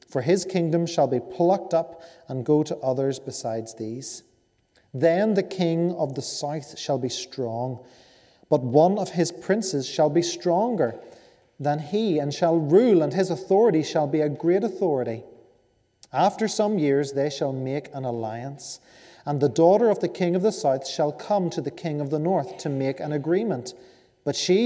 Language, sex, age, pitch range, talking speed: English, male, 30-49, 130-175 Hz, 180 wpm